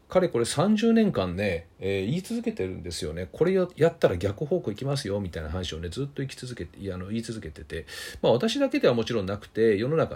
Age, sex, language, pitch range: 40-59, male, Japanese, 90-145 Hz